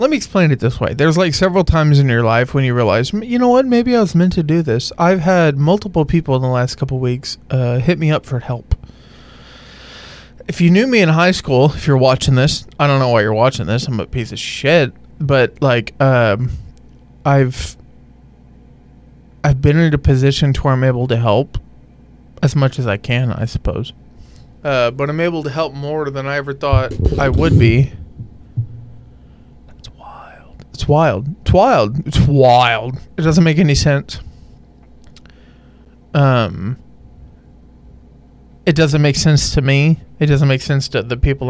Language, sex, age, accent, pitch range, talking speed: English, male, 20-39, American, 115-155 Hz, 180 wpm